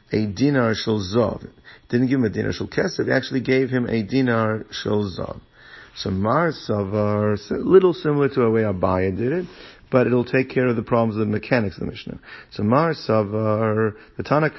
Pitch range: 105-130 Hz